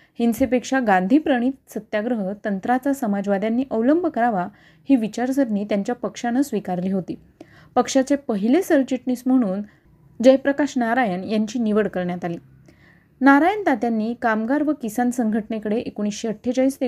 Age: 30-49